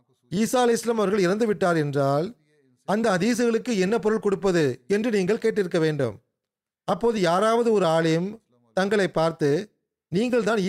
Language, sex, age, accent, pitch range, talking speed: Tamil, male, 30-49, native, 155-205 Hz, 135 wpm